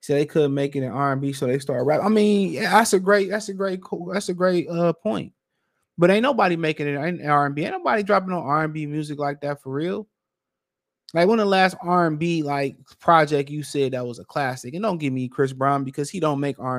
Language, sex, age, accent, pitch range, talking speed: English, male, 20-39, American, 130-170 Hz, 275 wpm